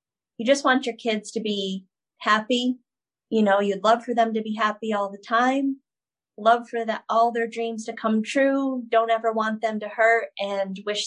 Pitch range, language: 200-235 Hz, English